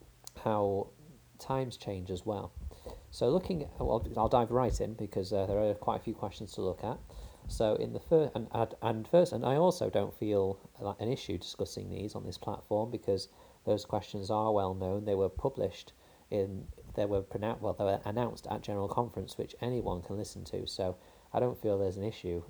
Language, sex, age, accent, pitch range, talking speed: English, male, 40-59, British, 95-115 Hz, 205 wpm